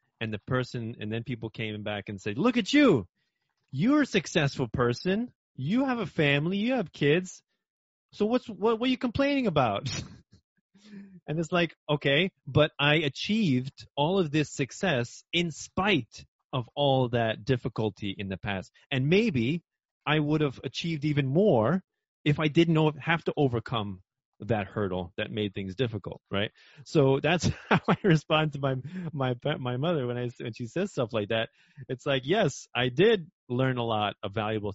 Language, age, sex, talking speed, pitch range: English, 30-49, male, 175 wpm, 115-165 Hz